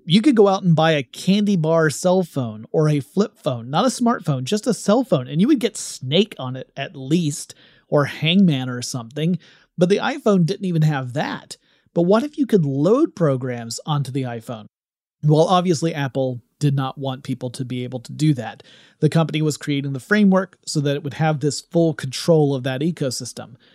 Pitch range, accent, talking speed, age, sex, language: 135-175 Hz, American, 205 wpm, 30-49, male, English